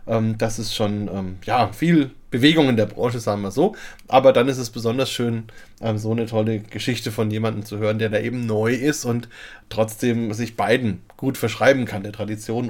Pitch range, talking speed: 115-155 Hz, 185 wpm